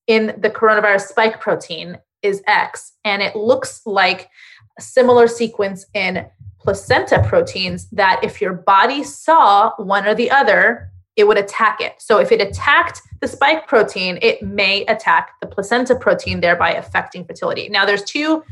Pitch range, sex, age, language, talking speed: 200-275 Hz, female, 20-39, English, 160 wpm